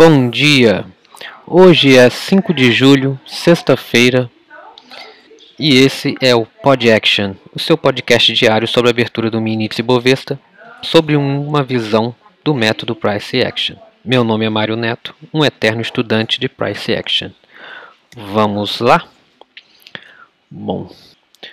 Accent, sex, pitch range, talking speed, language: Brazilian, male, 115-150 Hz, 130 wpm, Portuguese